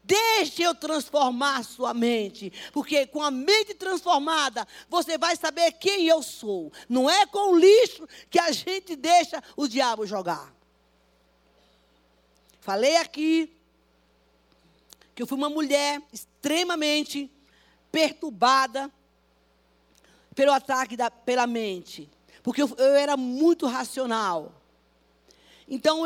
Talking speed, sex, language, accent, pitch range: 115 wpm, female, Portuguese, Brazilian, 235-325 Hz